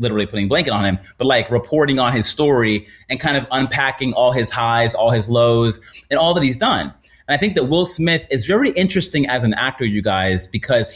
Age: 30-49